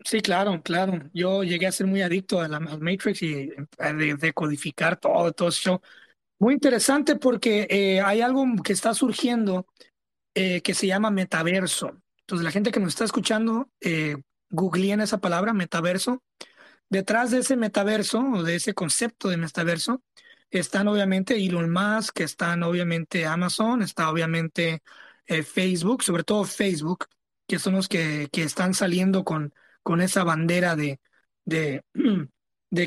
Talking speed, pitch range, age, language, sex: 150 wpm, 165-215 Hz, 20-39, English, male